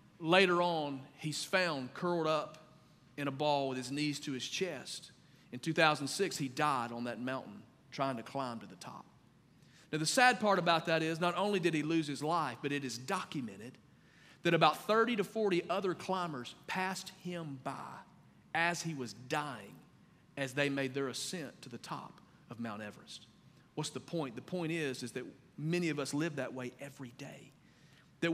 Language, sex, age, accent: English, male, 40-59, American